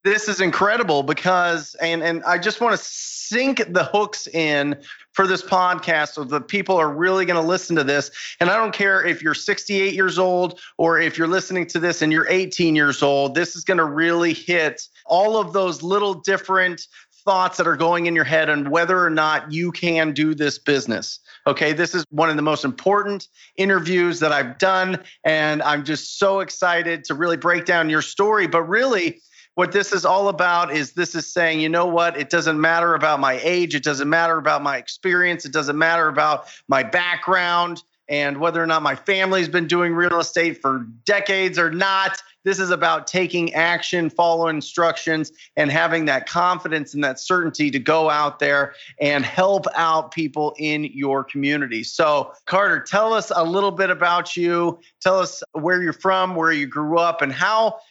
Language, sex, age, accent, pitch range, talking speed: English, male, 30-49, American, 155-185 Hz, 195 wpm